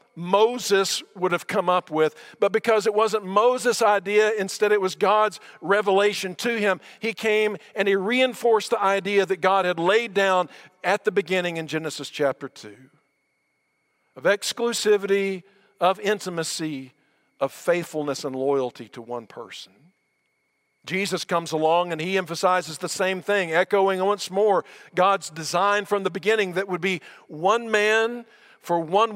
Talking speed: 150 wpm